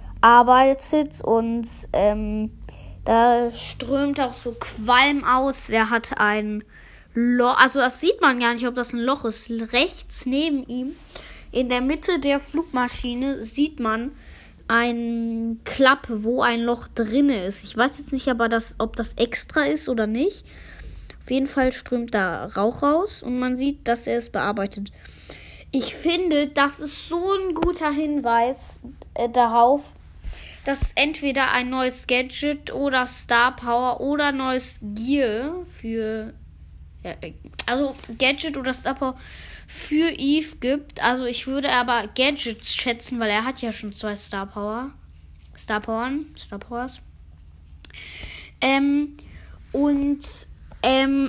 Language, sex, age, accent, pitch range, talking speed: German, female, 20-39, German, 230-275 Hz, 135 wpm